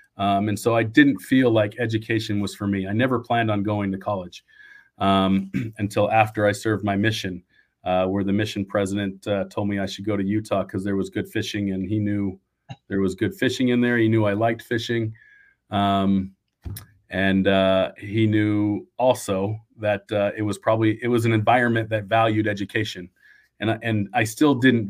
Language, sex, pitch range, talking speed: English, male, 100-115 Hz, 195 wpm